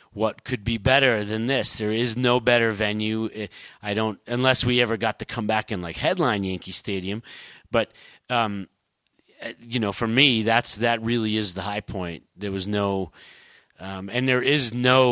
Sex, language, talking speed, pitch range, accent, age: male, English, 185 wpm, 100-125 Hz, American, 30-49